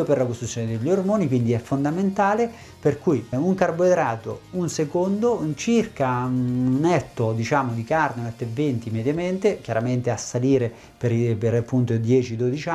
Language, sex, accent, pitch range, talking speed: Italian, male, native, 125-155 Hz, 150 wpm